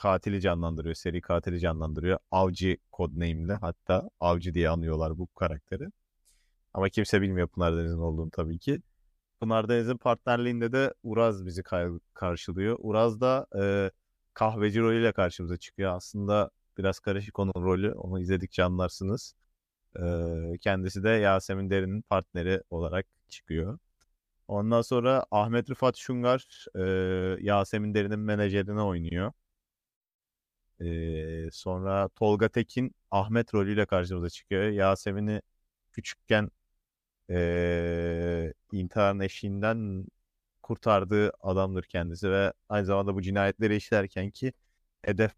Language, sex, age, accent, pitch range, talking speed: Turkish, male, 30-49, native, 85-110 Hz, 115 wpm